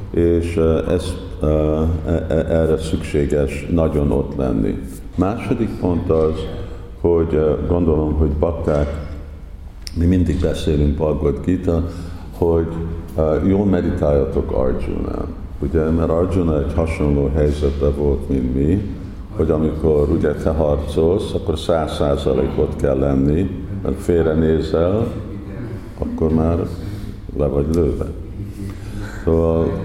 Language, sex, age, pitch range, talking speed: Hungarian, male, 50-69, 75-90 Hz, 105 wpm